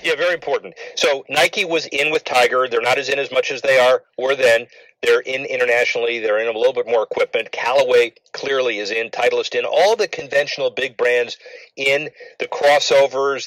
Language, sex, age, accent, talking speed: English, male, 40-59, American, 195 wpm